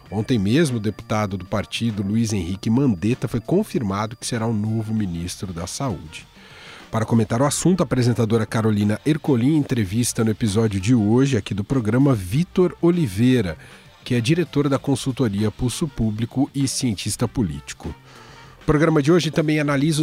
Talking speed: 155 wpm